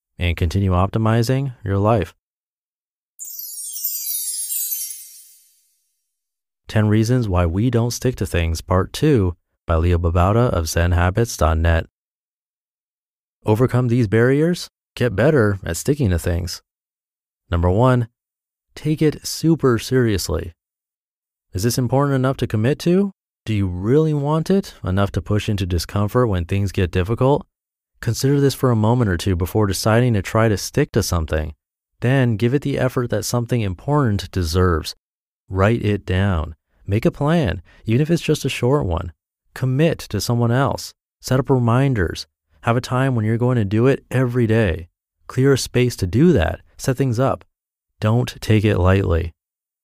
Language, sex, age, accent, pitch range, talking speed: English, male, 30-49, American, 90-125 Hz, 150 wpm